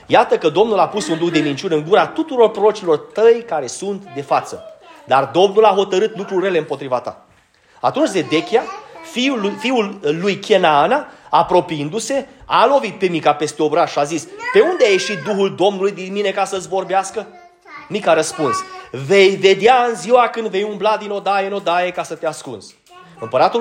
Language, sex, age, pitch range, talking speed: Romanian, male, 30-49, 170-255 Hz, 180 wpm